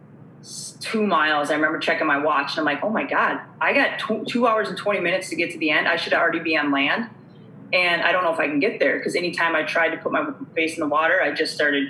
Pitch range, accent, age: 150-175 Hz, American, 20-39